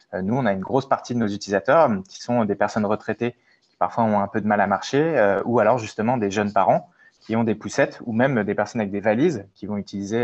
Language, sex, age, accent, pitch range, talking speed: French, male, 20-39, French, 100-115 Hz, 260 wpm